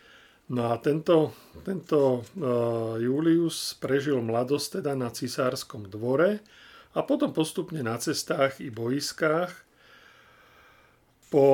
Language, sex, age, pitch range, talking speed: Slovak, male, 40-59, 120-140 Hz, 100 wpm